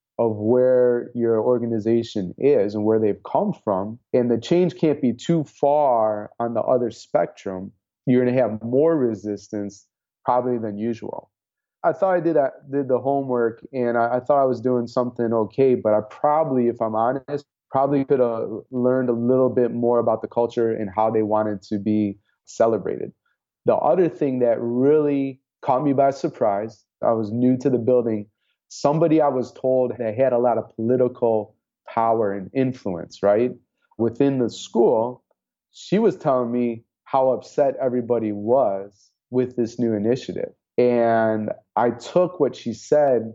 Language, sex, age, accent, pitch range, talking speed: English, male, 30-49, American, 110-130 Hz, 165 wpm